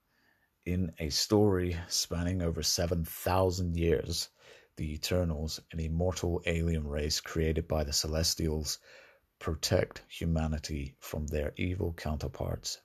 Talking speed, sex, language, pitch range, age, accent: 105 wpm, male, English, 80-90 Hz, 30-49, British